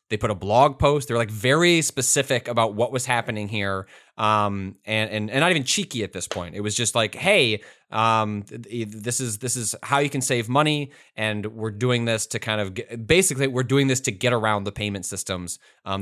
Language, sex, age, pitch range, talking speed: English, male, 20-39, 95-120 Hz, 215 wpm